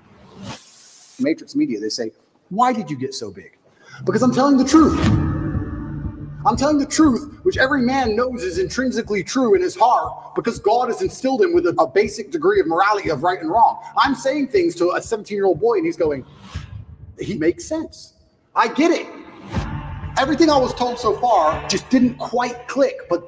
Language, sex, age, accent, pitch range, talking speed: English, male, 30-49, American, 180-300 Hz, 190 wpm